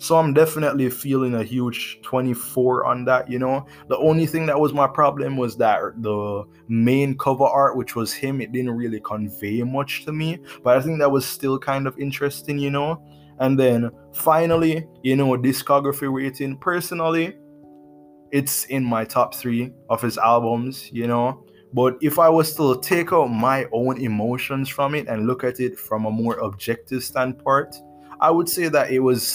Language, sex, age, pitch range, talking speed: English, male, 20-39, 115-145 Hz, 185 wpm